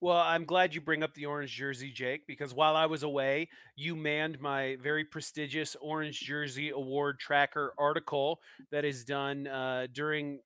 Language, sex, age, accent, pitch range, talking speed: English, male, 30-49, American, 140-175 Hz, 170 wpm